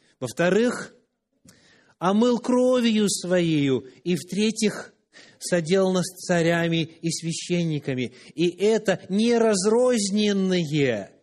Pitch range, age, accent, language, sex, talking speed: 150-205 Hz, 30-49, native, Russian, male, 80 wpm